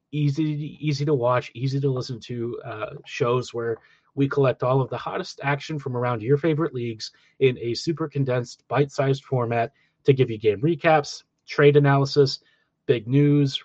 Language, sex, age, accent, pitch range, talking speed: English, male, 30-49, American, 125-150 Hz, 165 wpm